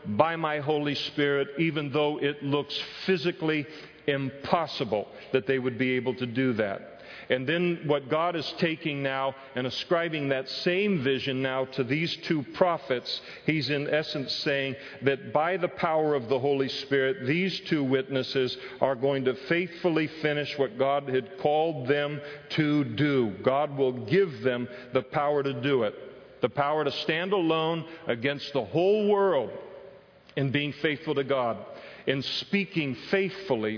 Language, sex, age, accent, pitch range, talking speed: English, male, 50-69, American, 135-170 Hz, 155 wpm